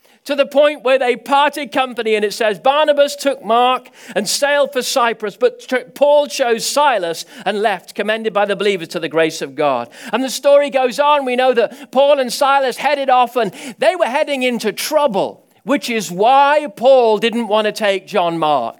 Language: English